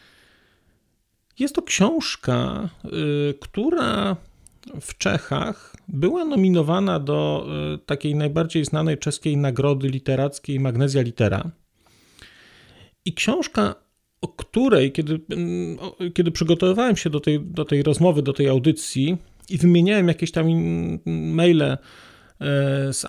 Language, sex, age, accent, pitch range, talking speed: Polish, male, 40-59, native, 140-175 Hz, 100 wpm